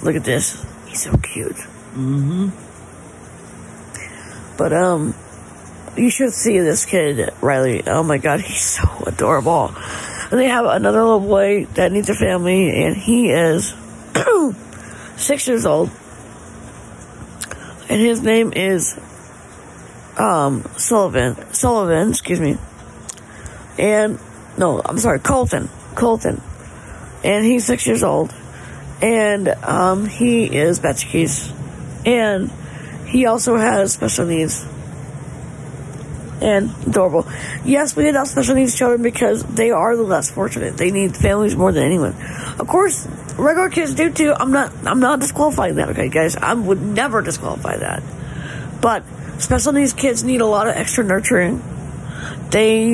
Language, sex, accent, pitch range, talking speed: English, female, American, 165-245 Hz, 135 wpm